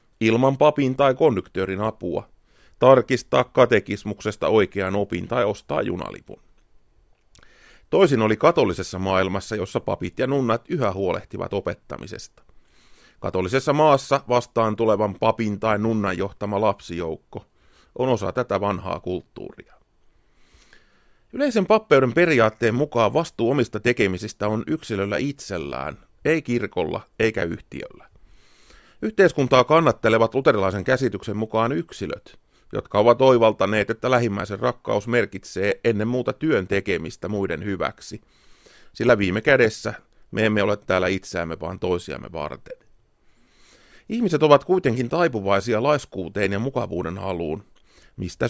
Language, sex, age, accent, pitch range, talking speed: Finnish, male, 30-49, native, 100-130 Hz, 110 wpm